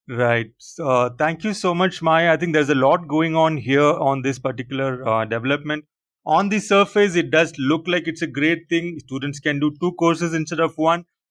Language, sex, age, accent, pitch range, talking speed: English, male, 30-49, Indian, 130-155 Hz, 210 wpm